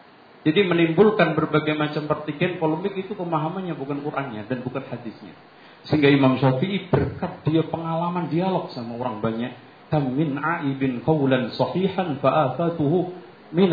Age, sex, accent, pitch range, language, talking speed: 50-69, male, native, 125-170 Hz, Indonesian, 120 wpm